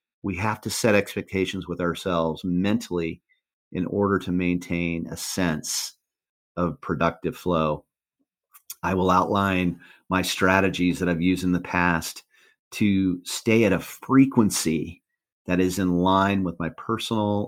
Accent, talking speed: American, 135 wpm